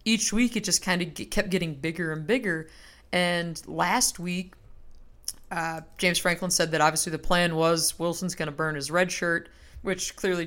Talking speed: 185 wpm